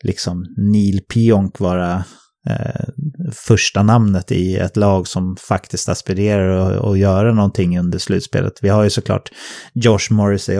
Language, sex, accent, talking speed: English, male, Swedish, 140 wpm